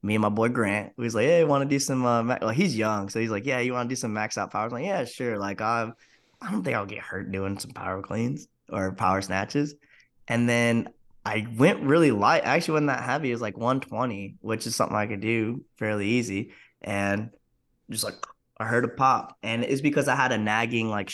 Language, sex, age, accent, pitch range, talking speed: English, male, 10-29, American, 105-125 Hz, 245 wpm